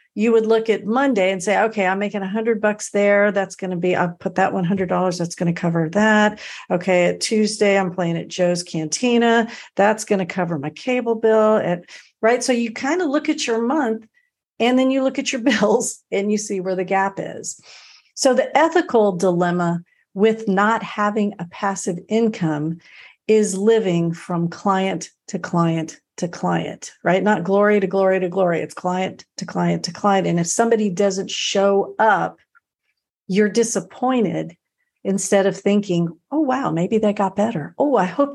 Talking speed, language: 180 wpm, English